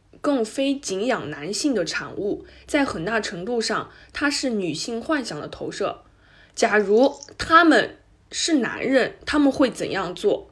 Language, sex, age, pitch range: Chinese, female, 20-39, 205-295 Hz